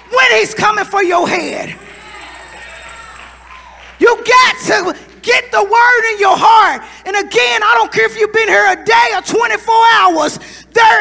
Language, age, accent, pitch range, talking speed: English, 30-49, American, 315-425 Hz, 165 wpm